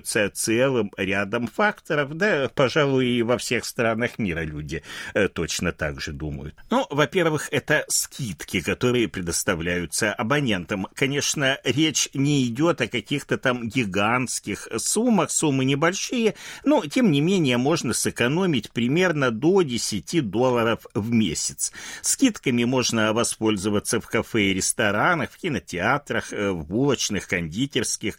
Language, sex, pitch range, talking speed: Russian, male, 105-165 Hz, 120 wpm